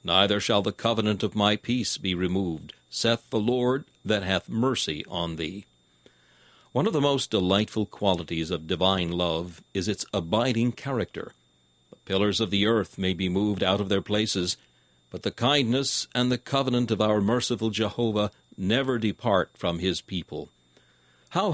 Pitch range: 85-115 Hz